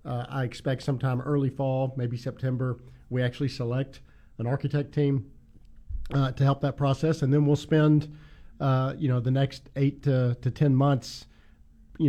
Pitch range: 120-140 Hz